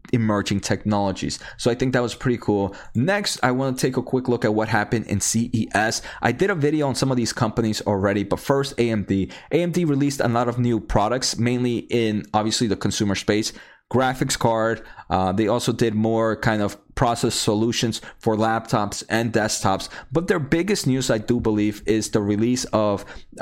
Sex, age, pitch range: male, 20-39, 105-130 Hz